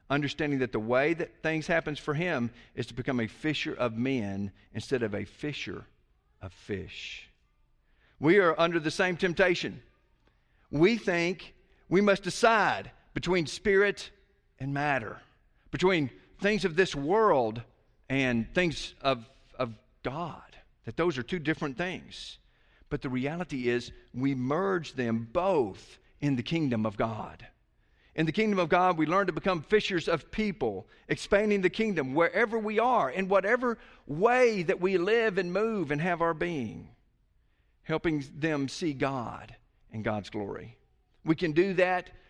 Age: 50-69